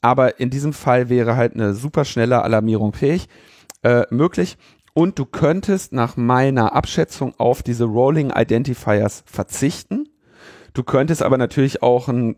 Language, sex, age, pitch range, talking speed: German, male, 40-59, 105-135 Hz, 135 wpm